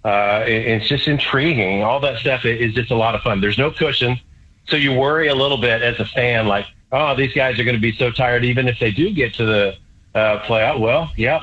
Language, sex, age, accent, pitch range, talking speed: English, male, 40-59, American, 105-125 Hz, 250 wpm